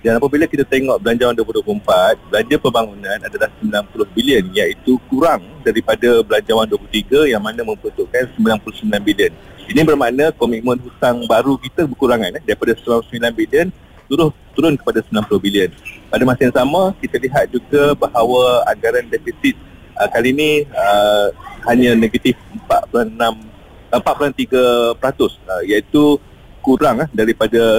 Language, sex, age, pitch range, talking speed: Malay, male, 40-59, 115-155 Hz, 125 wpm